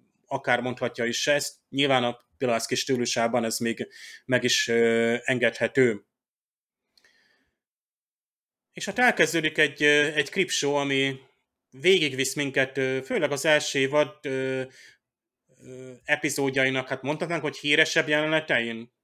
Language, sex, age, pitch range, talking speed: Hungarian, male, 30-49, 125-145 Hz, 105 wpm